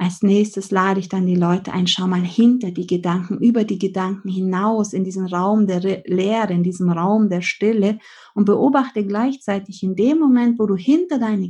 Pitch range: 185-230 Hz